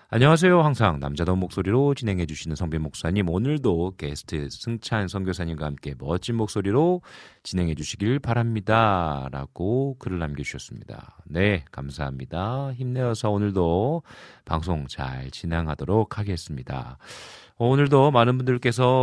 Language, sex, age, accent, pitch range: Korean, male, 40-59, native, 85-130 Hz